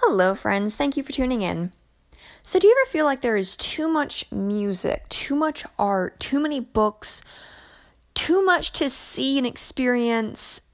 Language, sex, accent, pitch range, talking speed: English, female, American, 205-275 Hz, 170 wpm